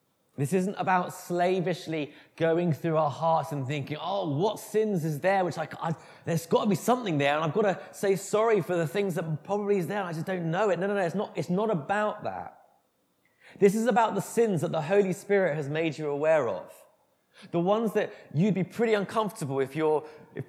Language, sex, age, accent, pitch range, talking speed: English, male, 20-39, British, 145-190 Hz, 225 wpm